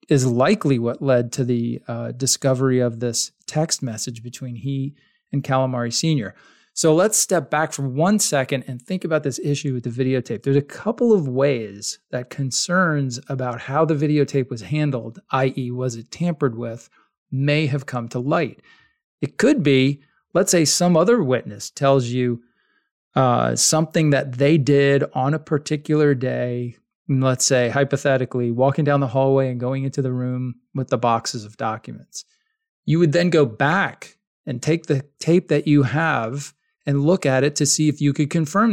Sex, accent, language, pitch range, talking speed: male, American, English, 130-160 Hz, 175 wpm